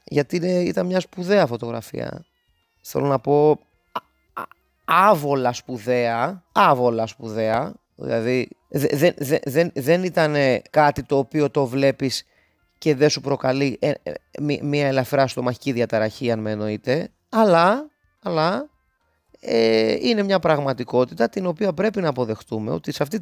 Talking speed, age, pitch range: 115 wpm, 30-49, 125-185 Hz